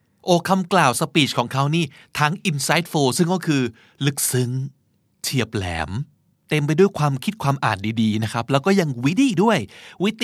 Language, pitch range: Thai, 120-170 Hz